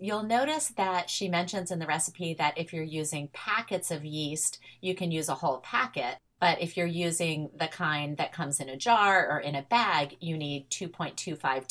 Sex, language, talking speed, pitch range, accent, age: female, English, 200 wpm, 160-225 Hz, American, 30-49